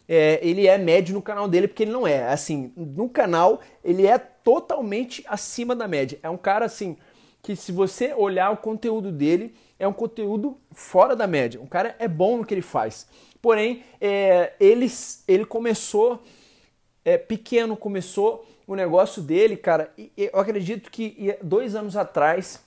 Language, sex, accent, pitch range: Portuguese, male, Brazilian, 185-235 Hz